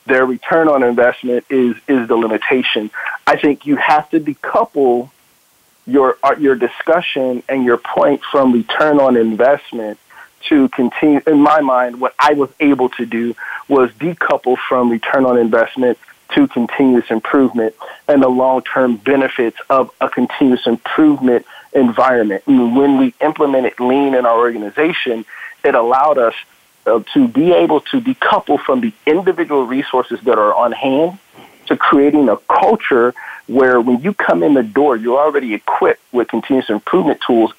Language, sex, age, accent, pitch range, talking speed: English, male, 40-59, American, 125-155 Hz, 155 wpm